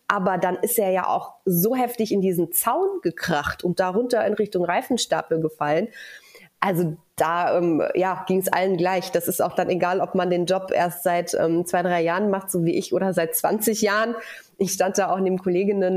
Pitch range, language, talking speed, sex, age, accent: 175-205 Hz, German, 205 wpm, female, 30-49, German